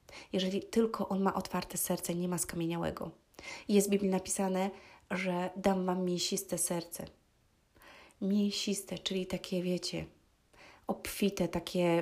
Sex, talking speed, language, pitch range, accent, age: female, 120 wpm, Polish, 175-195 Hz, native, 30-49